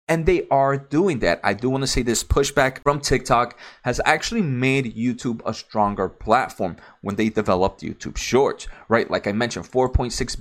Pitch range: 100-130 Hz